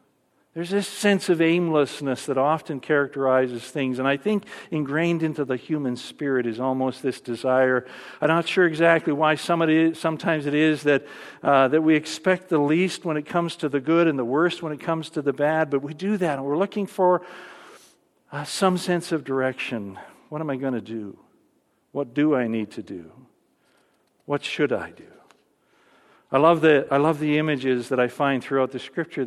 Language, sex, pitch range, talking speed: English, male, 130-170 Hz, 195 wpm